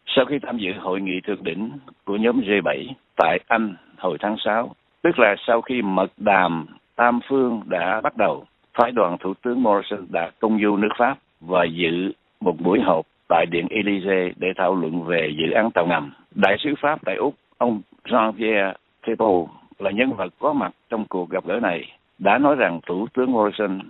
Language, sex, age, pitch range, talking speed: Vietnamese, male, 60-79, 95-120 Hz, 195 wpm